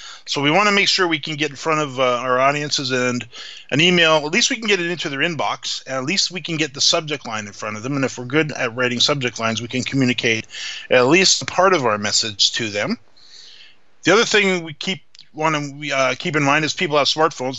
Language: English